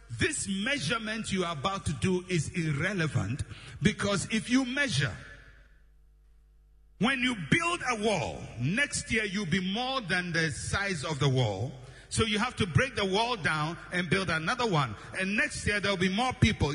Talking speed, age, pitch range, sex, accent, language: 175 wpm, 60-79, 130-205 Hz, male, Nigerian, English